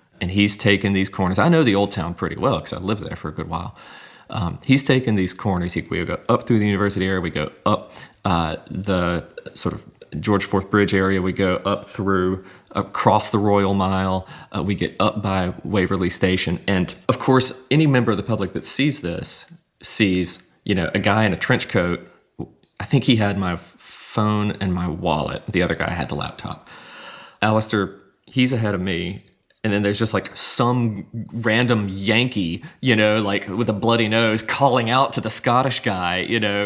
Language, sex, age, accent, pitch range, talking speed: English, male, 30-49, American, 90-110 Hz, 200 wpm